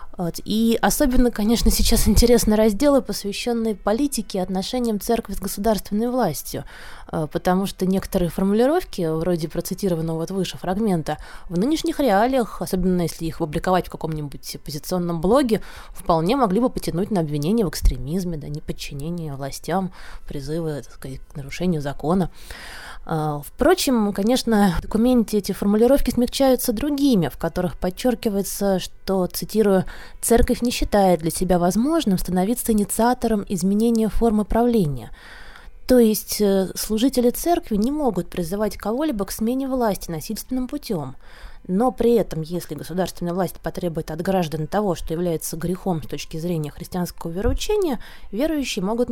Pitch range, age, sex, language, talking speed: 170-230 Hz, 20-39, female, Russian, 125 wpm